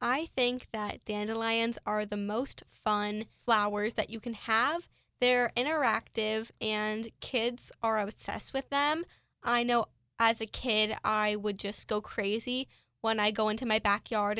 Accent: American